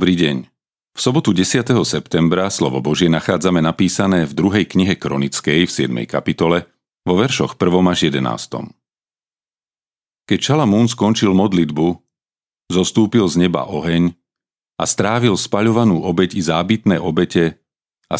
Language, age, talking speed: Slovak, 40-59, 125 wpm